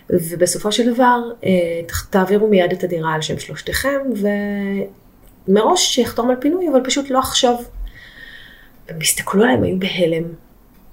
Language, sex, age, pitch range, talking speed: Hebrew, female, 30-49, 170-220 Hz, 130 wpm